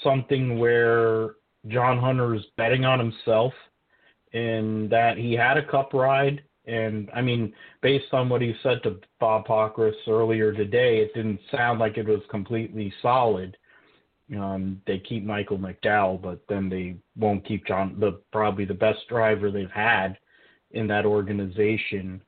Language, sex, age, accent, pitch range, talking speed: English, male, 30-49, American, 105-120 Hz, 155 wpm